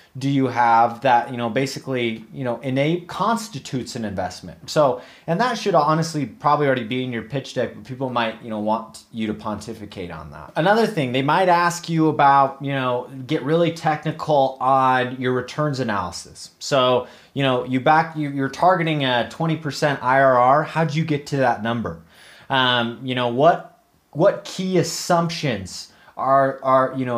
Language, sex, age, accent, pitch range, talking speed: English, male, 30-49, American, 125-160 Hz, 175 wpm